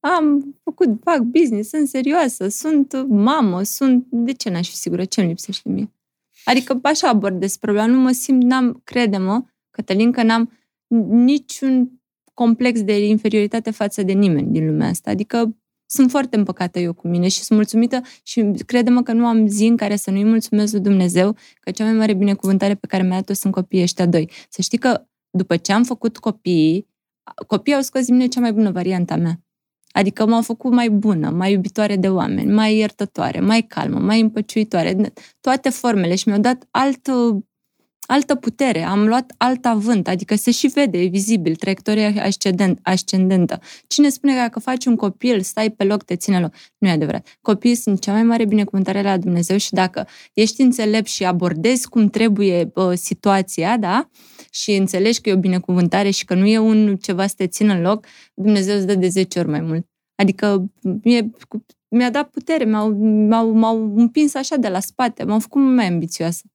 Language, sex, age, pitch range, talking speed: Romanian, female, 20-39, 195-240 Hz, 185 wpm